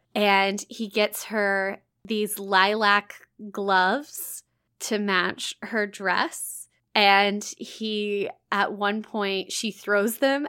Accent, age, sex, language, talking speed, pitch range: American, 10-29, female, English, 110 wpm, 195-245 Hz